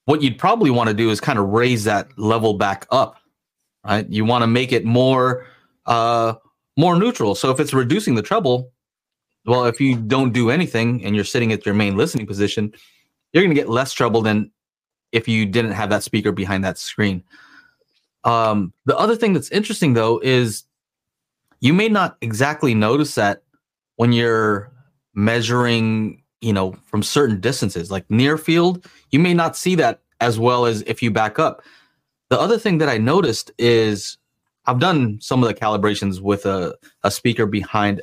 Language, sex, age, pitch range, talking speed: English, male, 30-49, 110-150 Hz, 180 wpm